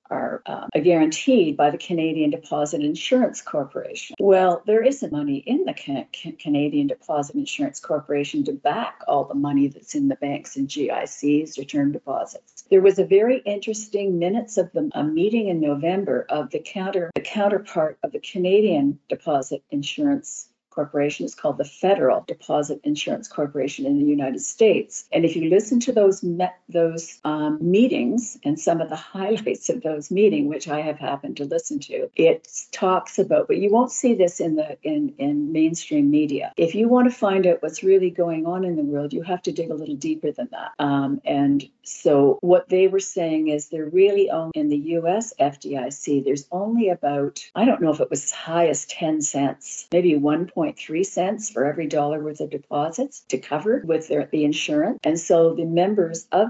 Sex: female